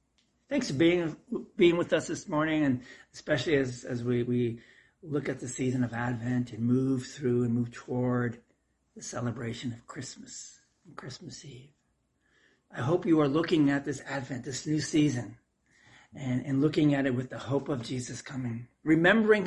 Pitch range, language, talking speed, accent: 125-150 Hz, English, 175 wpm, American